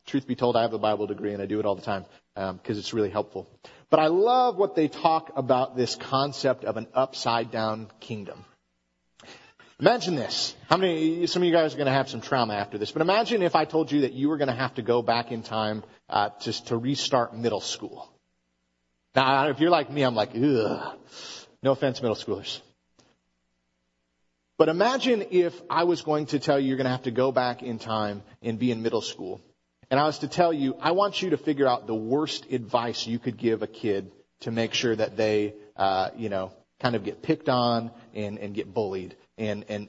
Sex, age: male, 40-59